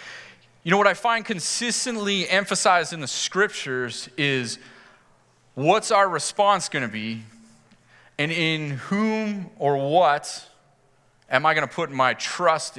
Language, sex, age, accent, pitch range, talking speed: English, male, 30-49, American, 130-185 Hz, 135 wpm